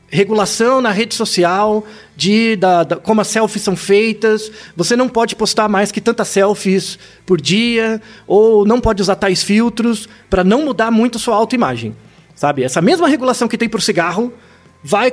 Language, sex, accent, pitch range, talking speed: Portuguese, male, Brazilian, 175-230 Hz, 165 wpm